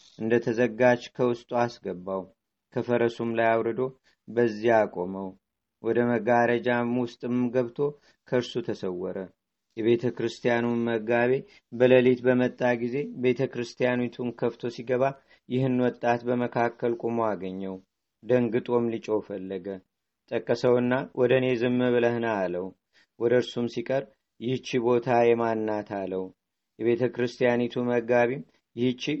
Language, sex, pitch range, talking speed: Amharic, male, 115-125 Hz, 95 wpm